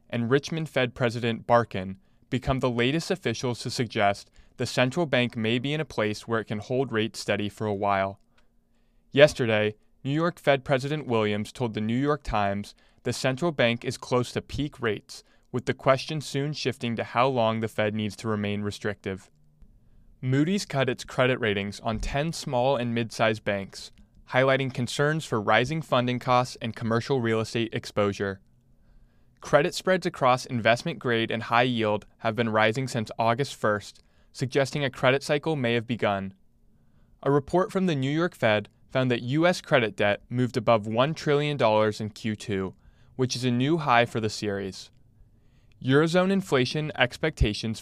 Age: 20-39